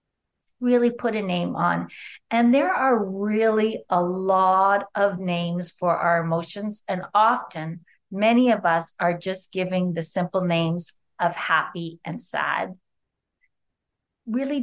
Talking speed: 130 wpm